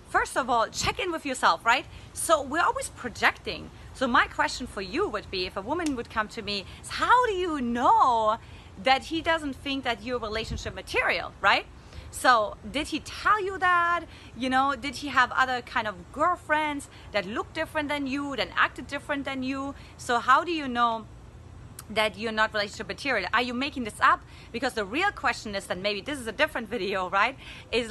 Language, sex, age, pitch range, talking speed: English, female, 30-49, 215-295 Hz, 200 wpm